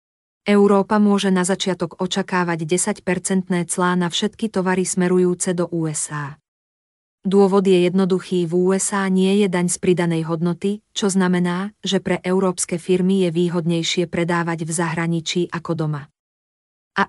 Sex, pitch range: female, 175-190 Hz